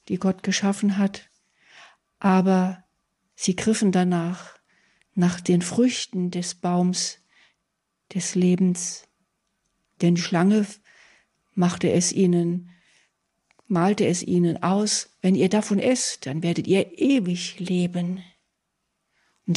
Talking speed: 105 wpm